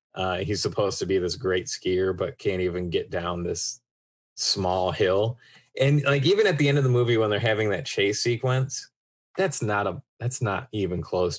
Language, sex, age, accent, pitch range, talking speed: English, male, 20-39, American, 95-125 Hz, 200 wpm